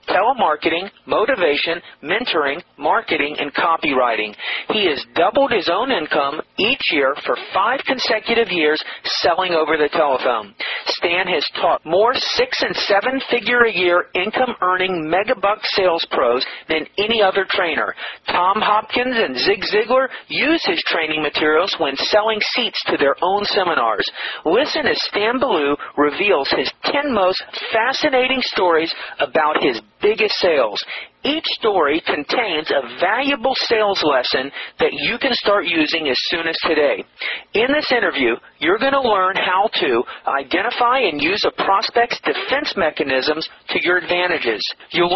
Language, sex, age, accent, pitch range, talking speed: English, male, 40-59, American, 180-255 Hz, 135 wpm